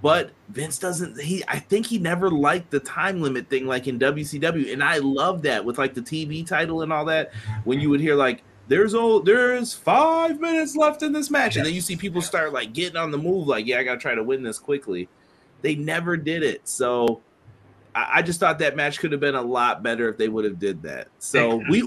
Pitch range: 140-170 Hz